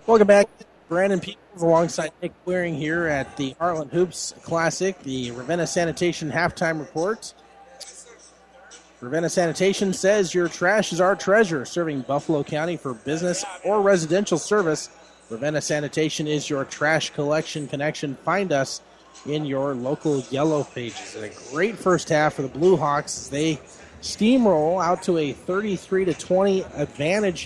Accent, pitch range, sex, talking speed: American, 145-180 Hz, male, 145 wpm